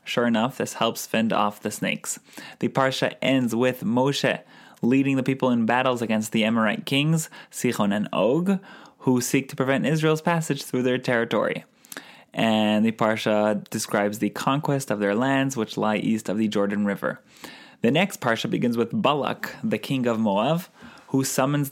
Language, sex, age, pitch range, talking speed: English, male, 20-39, 110-140 Hz, 170 wpm